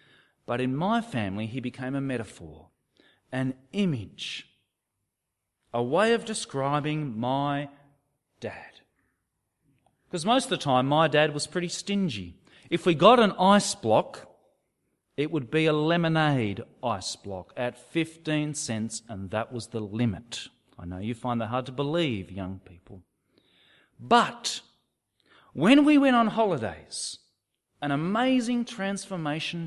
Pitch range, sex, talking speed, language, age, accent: 120-185 Hz, male, 135 wpm, English, 40-59, Australian